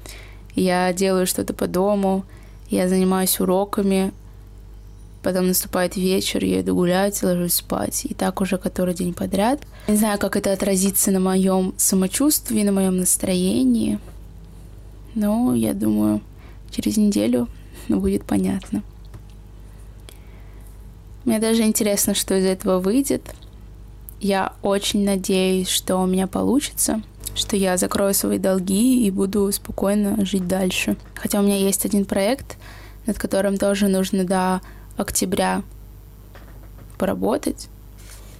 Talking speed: 120 wpm